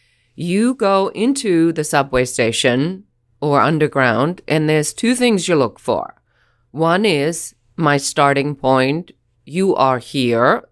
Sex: female